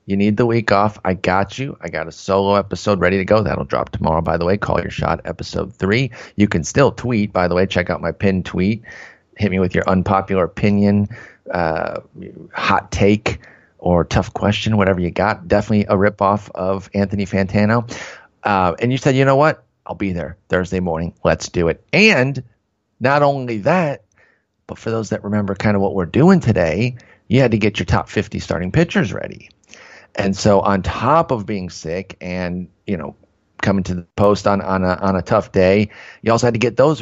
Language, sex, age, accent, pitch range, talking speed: English, male, 30-49, American, 95-115 Hz, 205 wpm